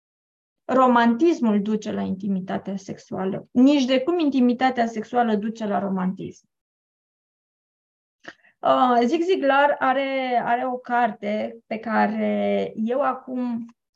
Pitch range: 220-280 Hz